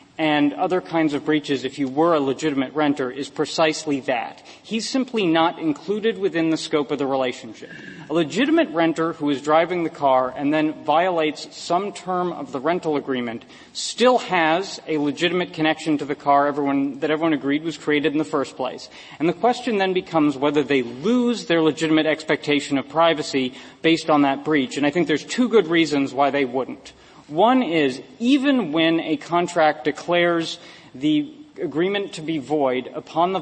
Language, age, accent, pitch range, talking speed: English, 40-59, American, 145-170 Hz, 180 wpm